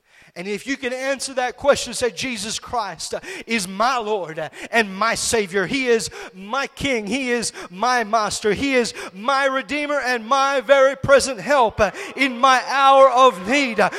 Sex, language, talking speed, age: male, English, 165 wpm, 30-49